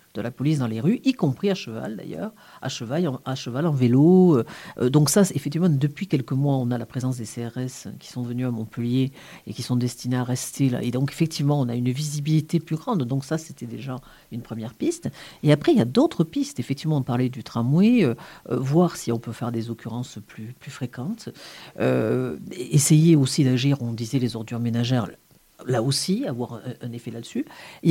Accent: French